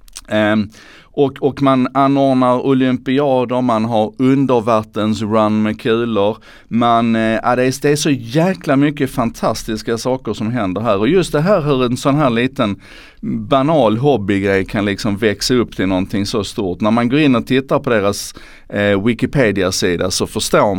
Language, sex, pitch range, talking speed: Swedish, male, 95-130 Hz, 160 wpm